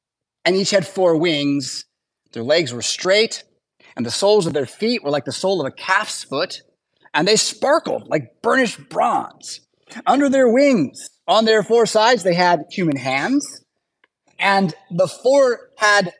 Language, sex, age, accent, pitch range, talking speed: English, male, 30-49, American, 165-225 Hz, 165 wpm